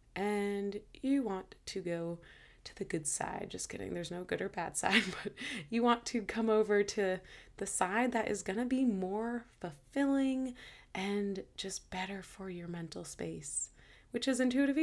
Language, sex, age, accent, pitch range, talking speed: English, female, 20-39, American, 165-220 Hz, 175 wpm